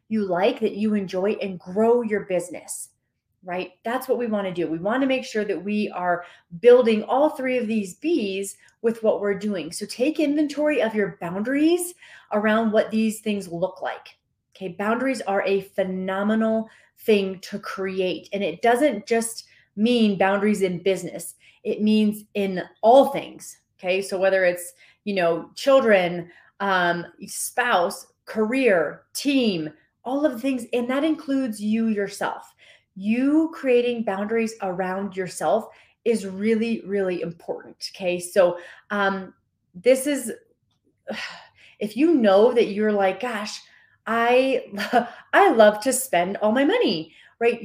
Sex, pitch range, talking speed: female, 195-245 Hz, 145 wpm